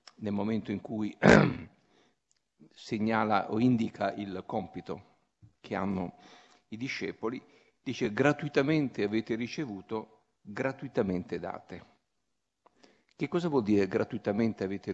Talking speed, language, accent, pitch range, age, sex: 100 wpm, Italian, native, 105-135 Hz, 50-69, male